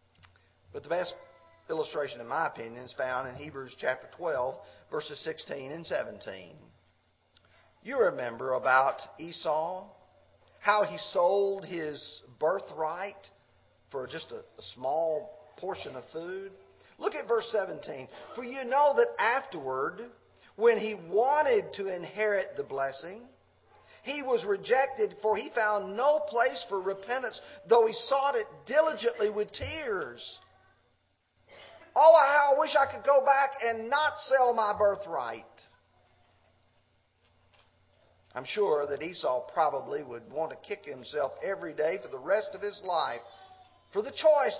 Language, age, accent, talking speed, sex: English, 40-59, American, 135 wpm, male